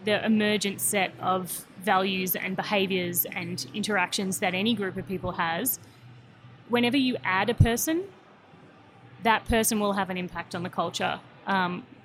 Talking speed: 150 wpm